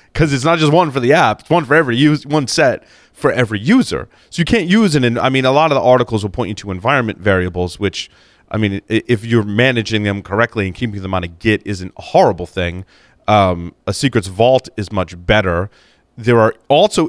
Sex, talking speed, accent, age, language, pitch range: male, 230 wpm, American, 30-49, English, 100-125 Hz